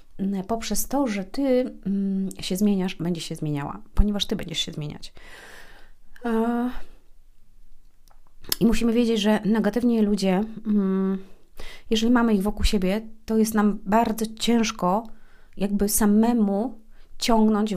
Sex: female